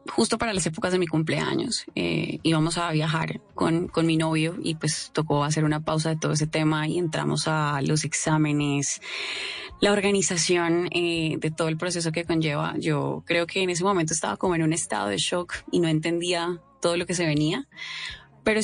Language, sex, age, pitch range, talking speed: Spanish, female, 20-39, 160-190 Hz, 195 wpm